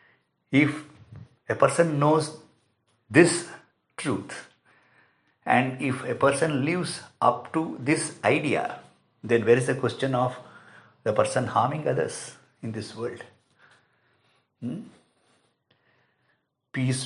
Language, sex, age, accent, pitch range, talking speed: English, male, 50-69, Indian, 125-180 Hz, 105 wpm